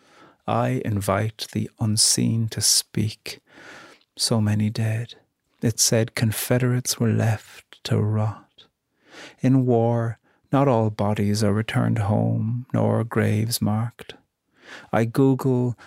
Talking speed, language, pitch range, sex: 110 wpm, English, 110-120 Hz, male